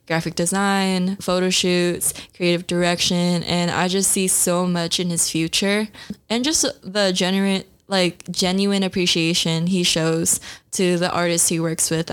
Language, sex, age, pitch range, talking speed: English, female, 20-39, 175-195 Hz, 150 wpm